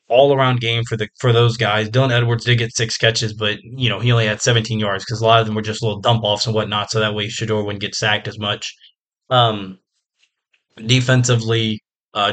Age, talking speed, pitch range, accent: 20-39, 225 wpm, 110-125 Hz, American